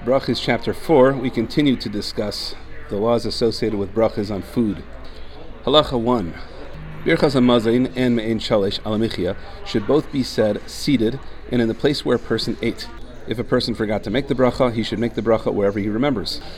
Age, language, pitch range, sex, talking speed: 40-59, English, 110-135 Hz, male, 185 wpm